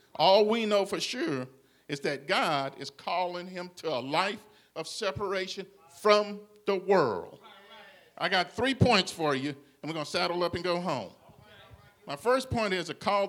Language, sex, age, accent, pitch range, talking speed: English, male, 50-69, American, 165-210 Hz, 180 wpm